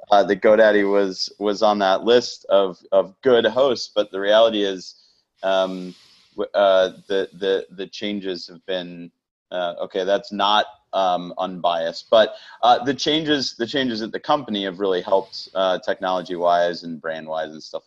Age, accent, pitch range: 30-49, American, 100-130 Hz